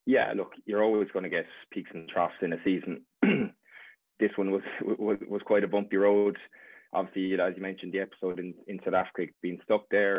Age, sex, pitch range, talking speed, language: 20-39, male, 90-100 Hz, 205 wpm, English